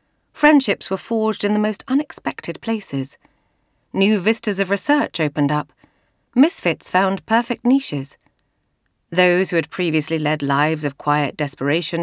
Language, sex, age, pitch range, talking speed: English, female, 30-49, 155-240 Hz, 135 wpm